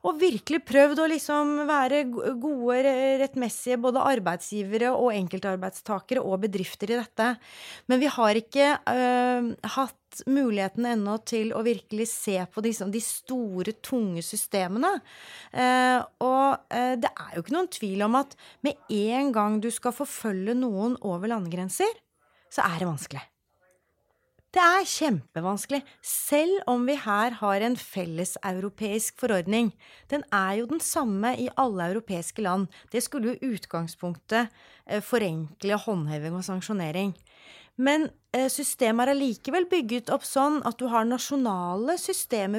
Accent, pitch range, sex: Swedish, 190-255 Hz, female